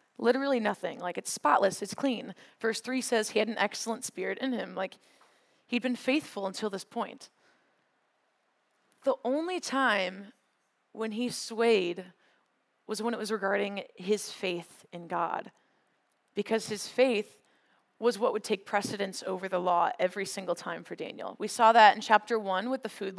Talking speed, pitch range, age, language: 165 wpm, 195-240 Hz, 20-39, English